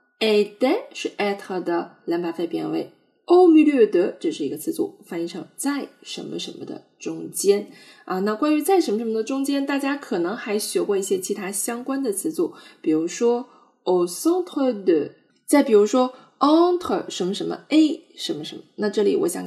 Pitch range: 200-335 Hz